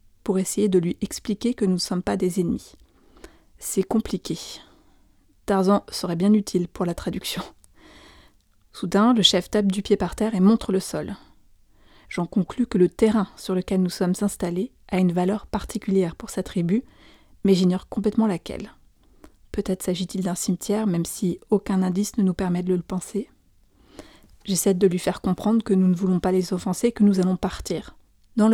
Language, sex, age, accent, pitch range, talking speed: French, female, 30-49, French, 185-215 Hz, 180 wpm